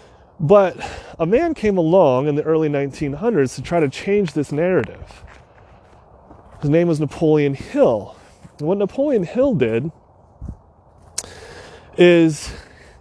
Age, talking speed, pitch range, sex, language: 30-49, 120 wpm, 135-200 Hz, male, English